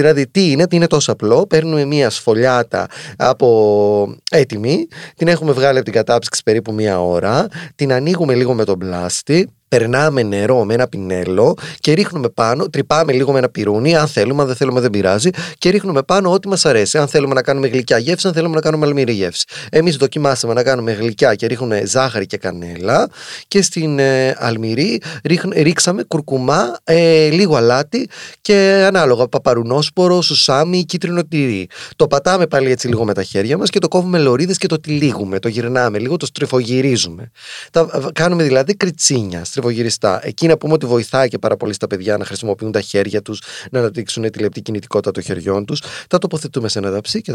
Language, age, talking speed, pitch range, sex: Greek, 30-49, 180 wpm, 110-160 Hz, male